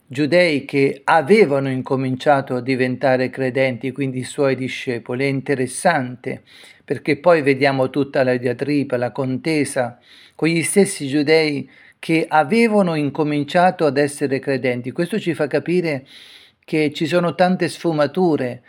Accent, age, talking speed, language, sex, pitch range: native, 40-59, 130 wpm, Italian, male, 135-160 Hz